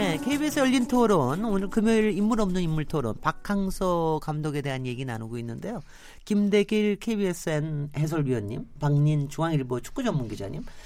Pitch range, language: 145-200 Hz, Korean